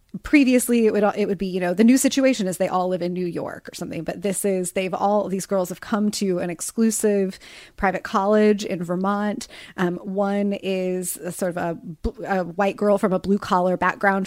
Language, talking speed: English, 215 wpm